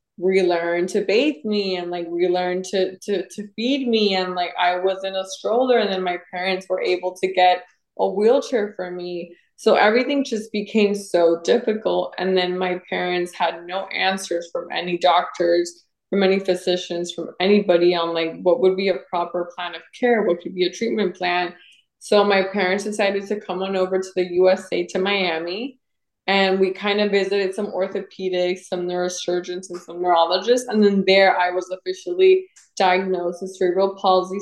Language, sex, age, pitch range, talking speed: English, female, 20-39, 180-205 Hz, 180 wpm